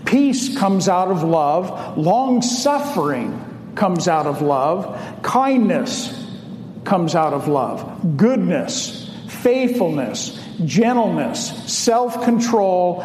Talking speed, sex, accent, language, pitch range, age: 85 wpm, male, American, English, 195-240 Hz, 50-69